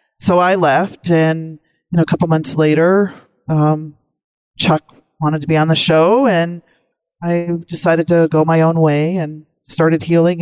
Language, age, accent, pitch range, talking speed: English, 40-59, American, 150-170 Hz, 165 wpm